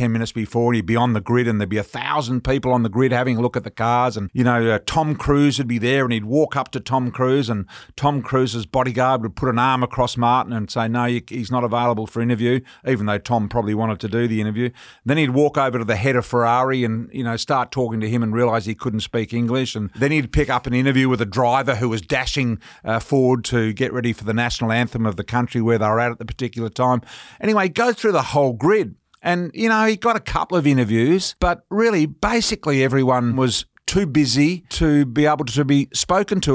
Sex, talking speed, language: male, 245 wpm, English